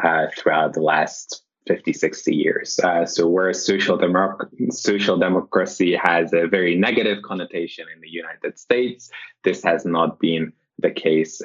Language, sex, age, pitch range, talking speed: English, male, 20-39, 85-115 Hz, 145 wpm